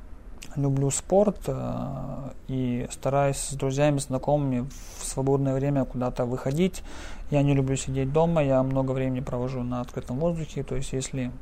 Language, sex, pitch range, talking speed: Russian, male, 125-145 Hz, 140 wpm